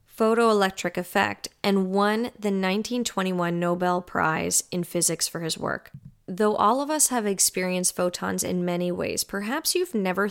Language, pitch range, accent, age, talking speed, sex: English, 175-225 Hz, American, 10-29, 150 wpm, female